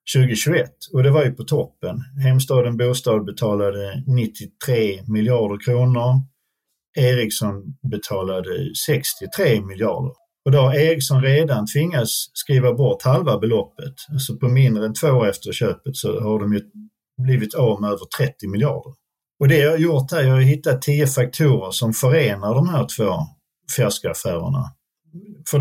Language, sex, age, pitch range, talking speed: Swedish, male, 50-69, 110-140 Hz, 155 wpm